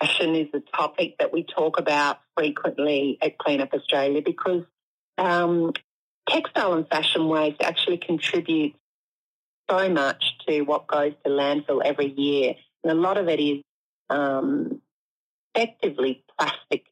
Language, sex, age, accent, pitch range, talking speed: English, female, 40-59, Australian, 140-175 Hz, 140 wpm